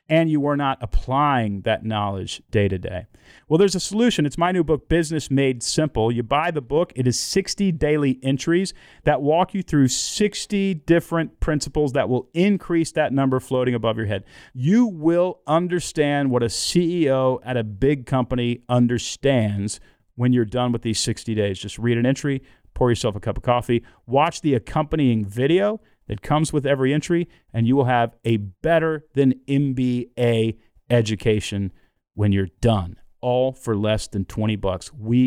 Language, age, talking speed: English, 40-59, 170 wpm